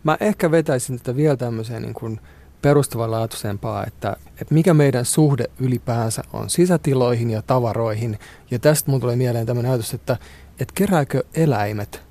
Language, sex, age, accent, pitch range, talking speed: Finnish, male, 30-49, native, 115-145 Hz, 145 wpm